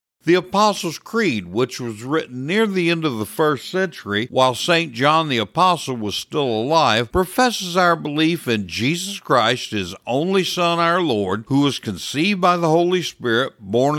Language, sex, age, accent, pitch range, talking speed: English, male, 60-79, American, 115-165 Hz, 170 wpm